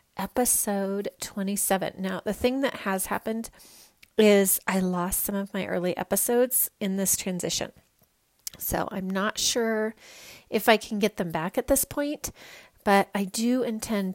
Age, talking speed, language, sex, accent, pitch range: 30-49, 155 wpm, English, female, American, 180-215 Hz